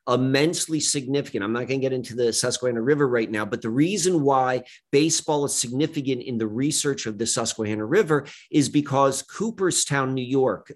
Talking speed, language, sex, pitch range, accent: 180 wpm, English, male, 120-145 Hz, American